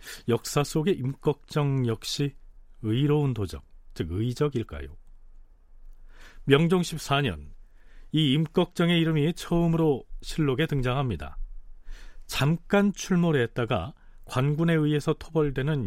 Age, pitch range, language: 40-59, 95-155 Hz, Korean